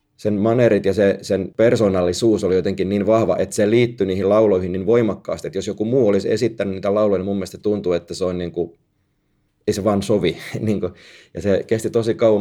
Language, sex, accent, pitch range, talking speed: Finnish, male, native, 95-110 Hz, 210 wpm